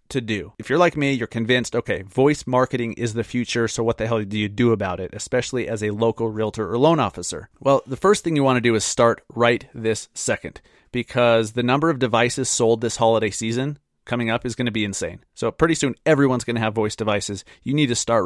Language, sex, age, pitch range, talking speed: English, male, 30-49, 115-135 Hz, 240 wpm